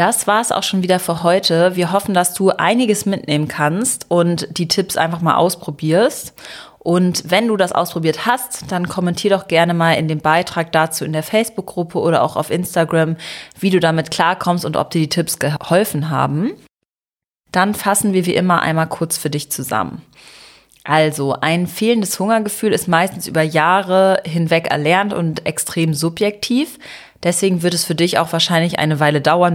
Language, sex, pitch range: German, female, 155-190 Hz